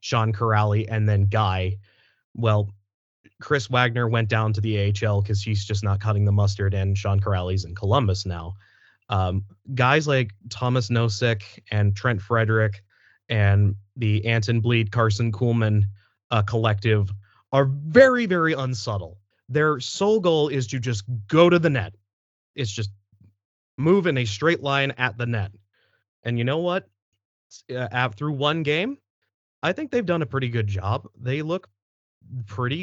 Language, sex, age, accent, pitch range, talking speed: English, male, 30-49, American, 105-130 Hz, 155 wpm